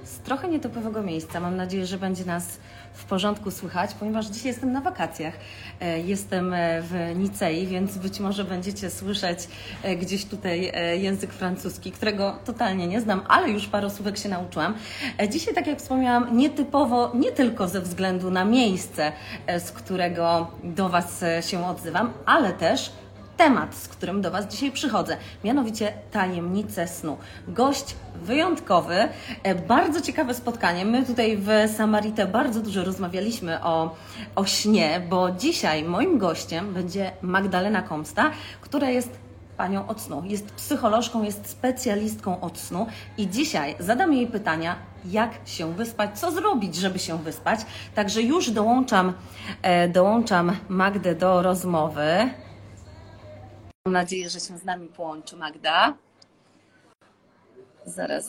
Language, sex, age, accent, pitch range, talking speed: Polish, female, 30-49, native, 175-225 Hz, 135 wpm